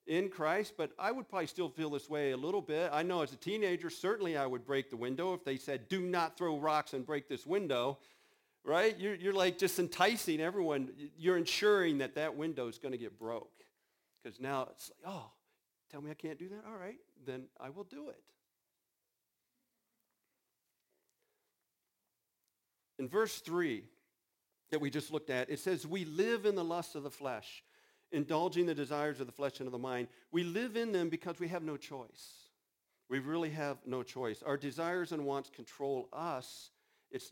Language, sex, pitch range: English, male, 140-185 Hz